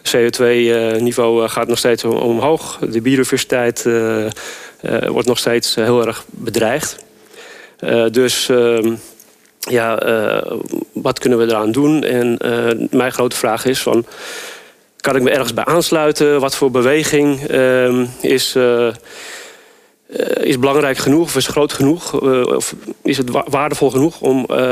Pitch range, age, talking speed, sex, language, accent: 120-150 Hz, 40-59, 135 wpm, male, Dutch, Dutch